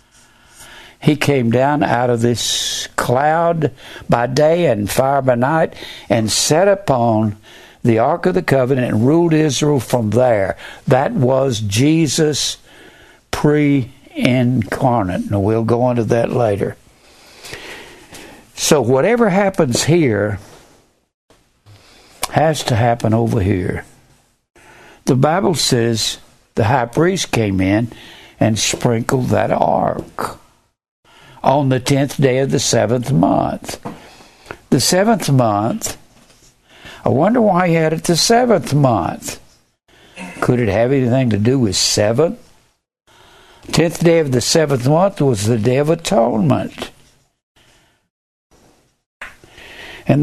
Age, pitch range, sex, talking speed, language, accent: 60-79, 115-155 Hz, male, 115 wpm, English, American